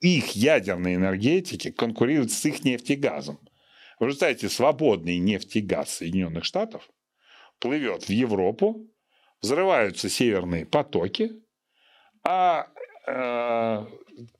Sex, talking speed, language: male, 90 wpm, Russian